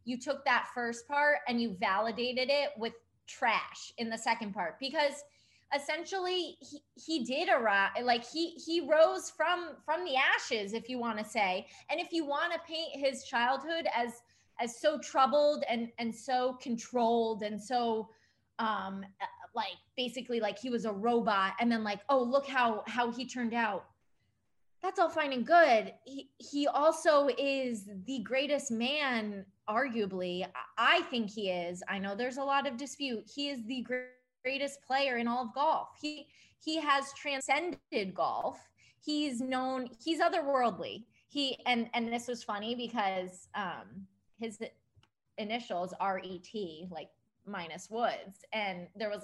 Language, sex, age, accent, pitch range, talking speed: English, female, 20-39, American, 215-280 Hz, 160 wpm